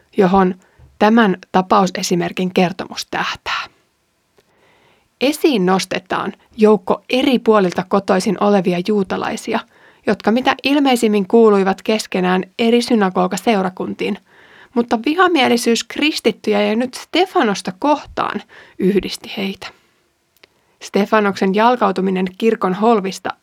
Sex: female